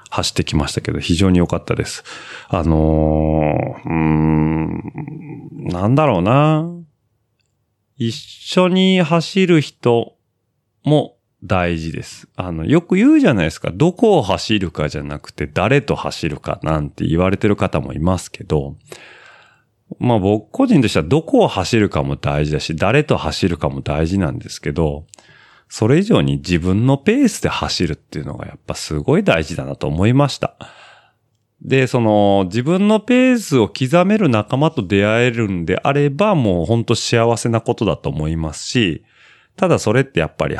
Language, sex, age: Japanese, male, 30-49